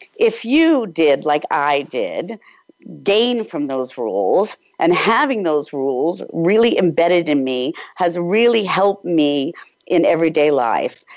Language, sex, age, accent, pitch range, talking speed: English, female, 50-69, American, 170-275 Hz, 135 wpm